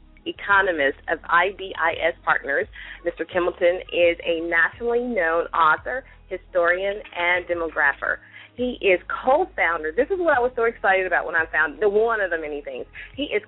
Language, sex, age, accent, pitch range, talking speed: English, female, 30-49, American, 165-220 Hz, 160 wpm